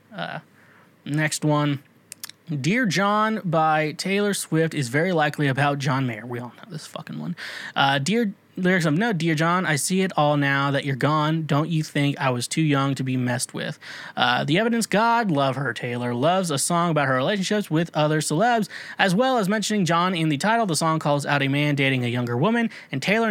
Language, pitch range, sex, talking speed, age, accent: English, 135-190 Hz, male, 210 wpm, 20-39, American